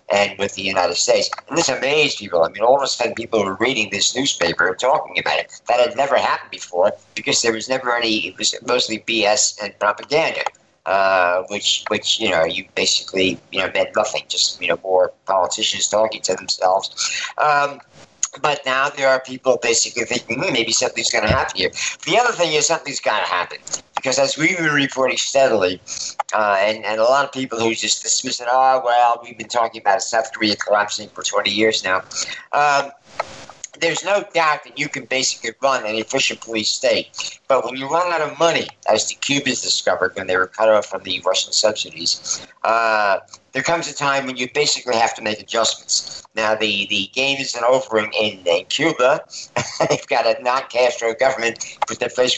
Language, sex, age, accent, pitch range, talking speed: English, male, 50-69, American, 105-135 Hz, 200 wpm